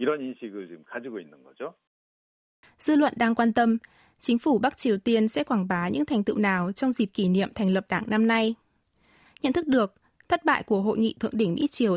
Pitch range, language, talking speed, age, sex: 195-245 Hz, Vietnamese, 190 wpm, 20-39, female